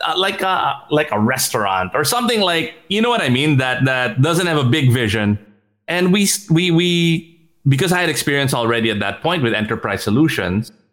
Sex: male